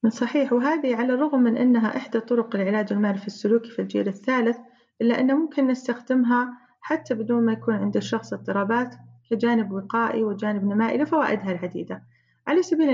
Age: 30-49